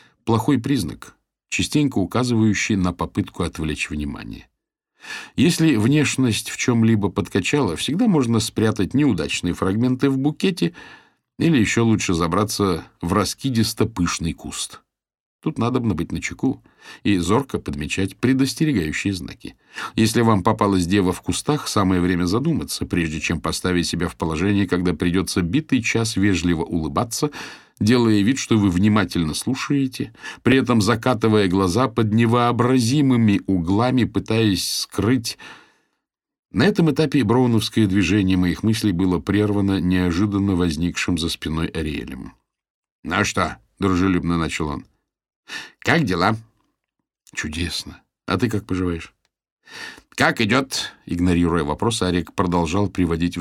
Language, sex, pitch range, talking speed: Russian, male, 85-115 Hz, 125 wpm